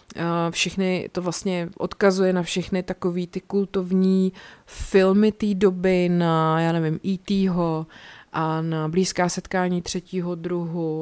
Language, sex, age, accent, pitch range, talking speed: Czech, female, 30-49, native, 160-185 Hz, 120 wpm